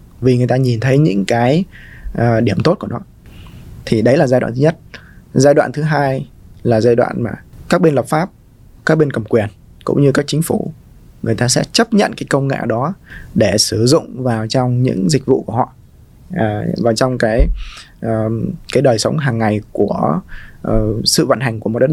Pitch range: 115-145 Hz